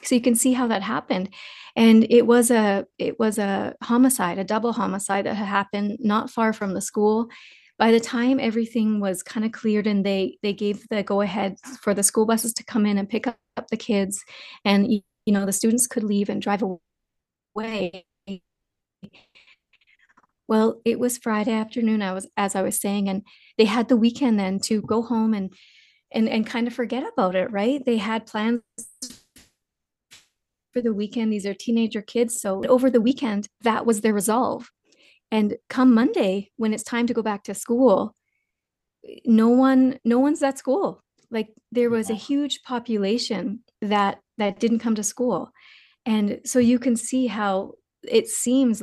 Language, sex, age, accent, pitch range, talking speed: English, female, 30-49, American, 205-245 Hz, 180 wpm